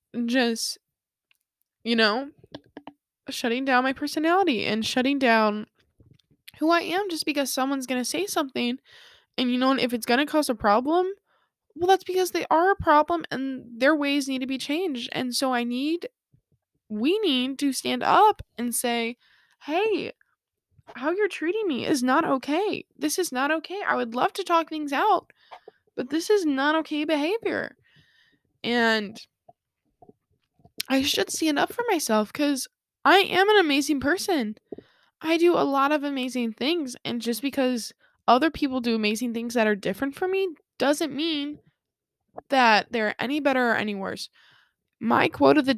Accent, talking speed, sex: American, 165 wpm, female